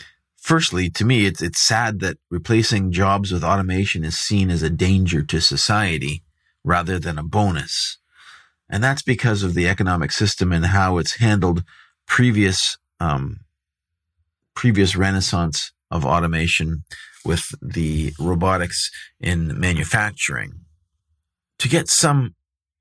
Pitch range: 85-105 Hz